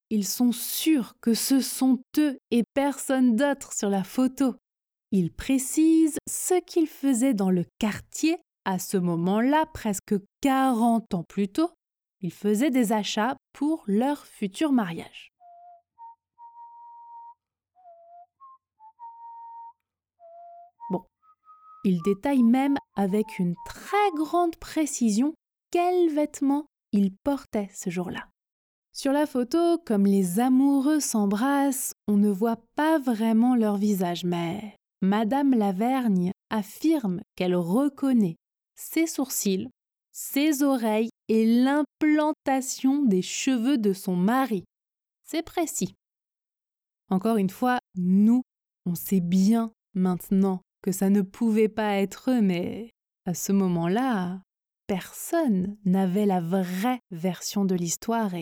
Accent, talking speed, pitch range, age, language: French, 115 wpm, 200-300 Hz, 20-39, French